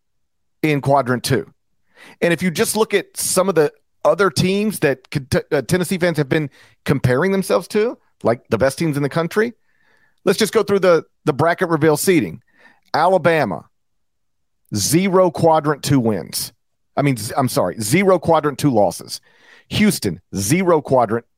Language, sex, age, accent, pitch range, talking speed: English, male, 40-59, American, 125-180 Hz, 155 wpm